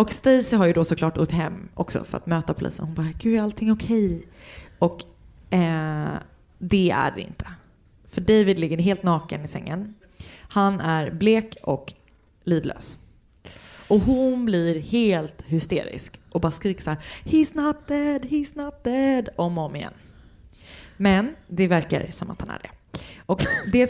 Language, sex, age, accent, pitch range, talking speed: Swedish, female, 20-39, native, 160-215 Hz, 165 wpm